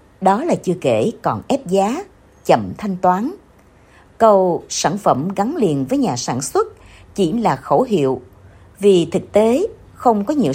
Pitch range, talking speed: 165-240 Hz, 165 wpm